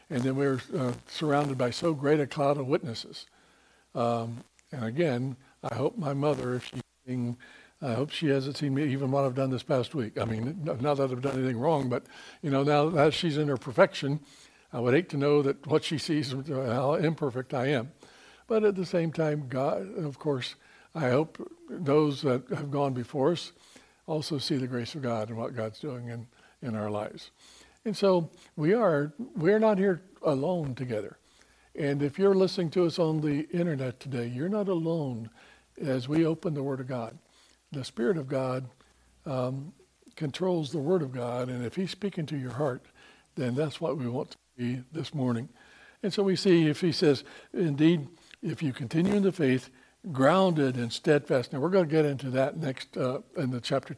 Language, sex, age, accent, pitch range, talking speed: English, male, 60-79, American, 130-165 Hz, 200 wpm